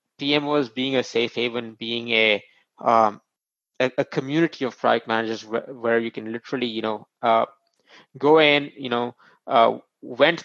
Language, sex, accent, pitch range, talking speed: English, male, Indian, 125-150 Hz, 160 wpm